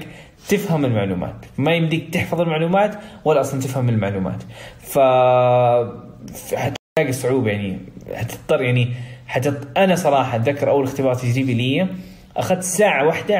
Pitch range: 130-175 Hz